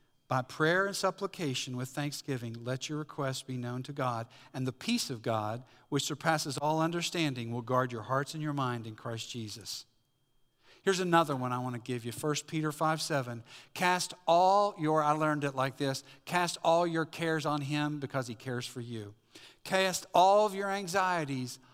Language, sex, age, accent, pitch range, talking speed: English, male, 50-69, American, 130-160 Hz, 190 wpm